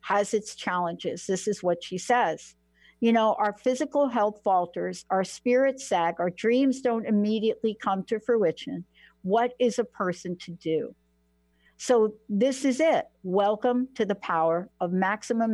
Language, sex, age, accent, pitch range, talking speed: English, female, 60-79, American, 180-230 Hz, 155 wpm